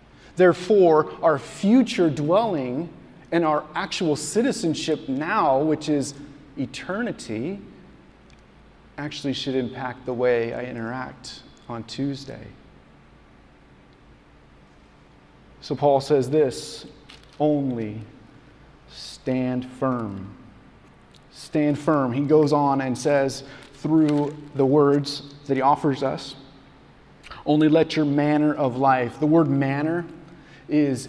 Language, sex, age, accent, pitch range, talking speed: English, male, 30-49, American, 130-160 Hz, 100 wpm